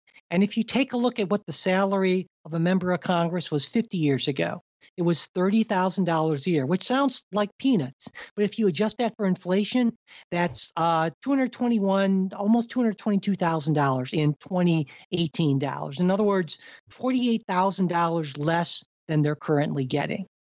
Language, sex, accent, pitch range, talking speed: English, male, American, 170-220 Hz, 150 wpm